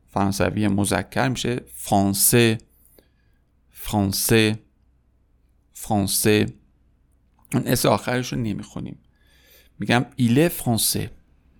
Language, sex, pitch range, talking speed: Persian, male, 95-125 Hz, 60 wpm